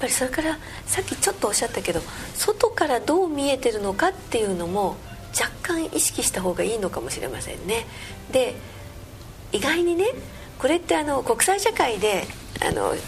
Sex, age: female, 40-59